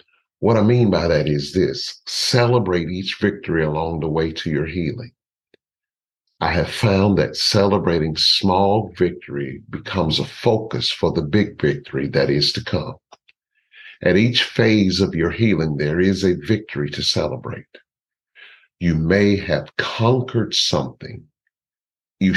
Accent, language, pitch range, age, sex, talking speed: American, English, 85-110 Hz, 50-69, male, 140 wpm